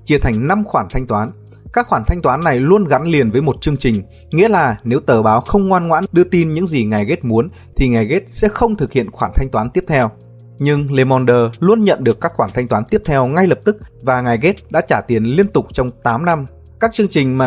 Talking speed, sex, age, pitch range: 255 wpm, male, 20-39, 120-165 Hz